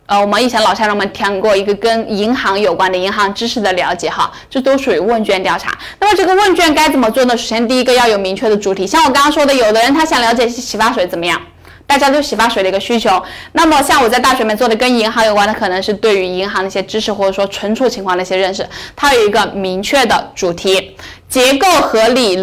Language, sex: Chinese, female